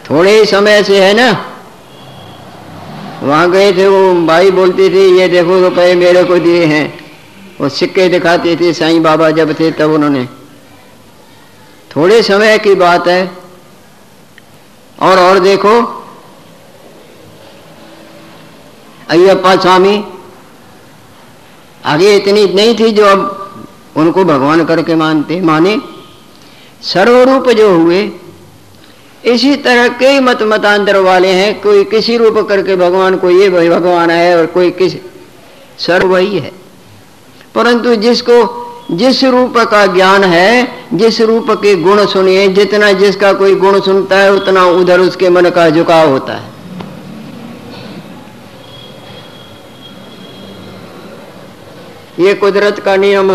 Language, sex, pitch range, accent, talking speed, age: Hindi, female, 175-205 Hz, native, 125 wpm, 50-69